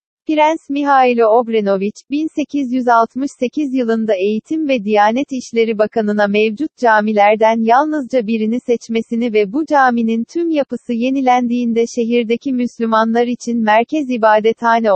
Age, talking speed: 40-59, 105 wpm